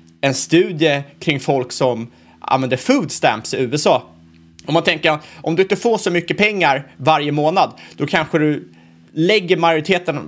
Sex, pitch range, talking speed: male, 120-170 Hz, 160 wpm